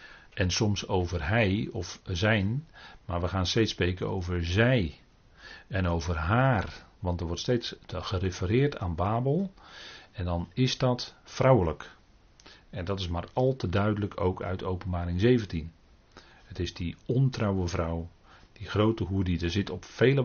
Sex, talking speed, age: male, 155 wpm, 40-59